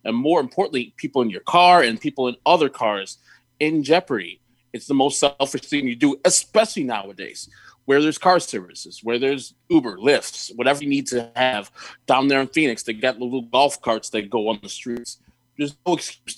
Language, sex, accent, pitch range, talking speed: English, male, American, 115-160 Hz, 200 wpm